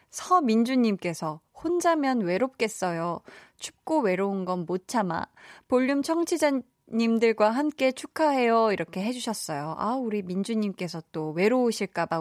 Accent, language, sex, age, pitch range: native, Korean, female, 20-39, 180-250 Hz